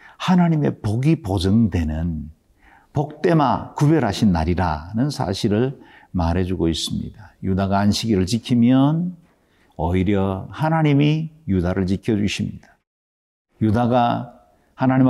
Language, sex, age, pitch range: Korean, male, 50-69, 100-135 Hz